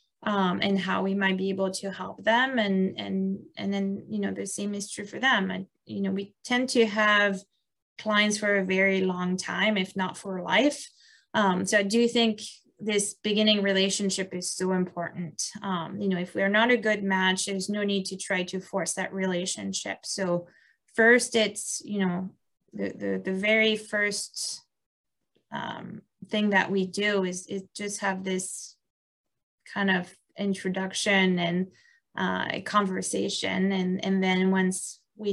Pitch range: 185-205 Hz